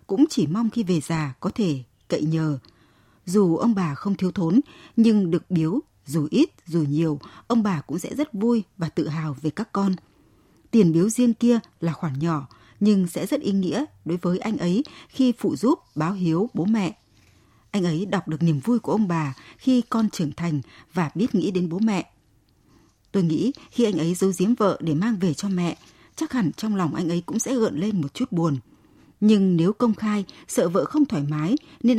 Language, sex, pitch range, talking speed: Vietnamese, female, 160-220 Hz, 210 wpm